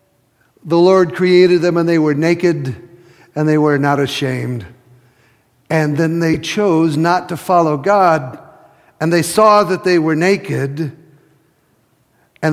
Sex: male